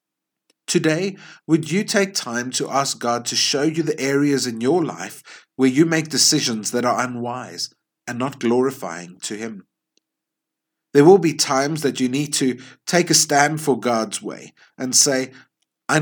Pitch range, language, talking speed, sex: 120-145 Hz, English, 170 wpm, male